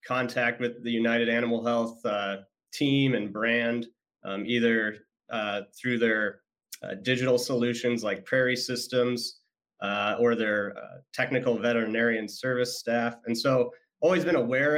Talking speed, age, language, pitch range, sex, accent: 140 wpm, 30-49, English, 115-125 Hz, male, American